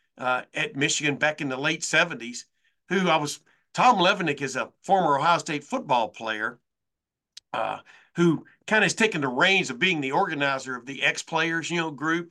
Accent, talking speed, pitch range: American, 185 wpm, 140-195 Hz